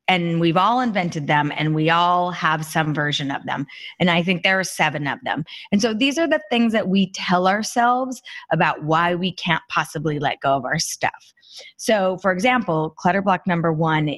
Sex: female